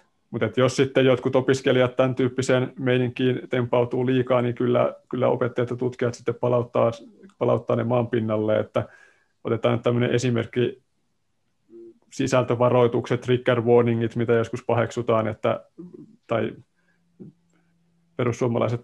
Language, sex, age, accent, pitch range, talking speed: Finnish, male, 30-49, native, 115-125 Hz, 110 wpm